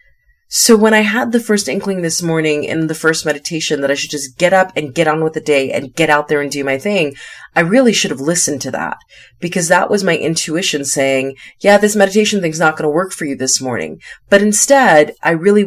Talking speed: 240 wpm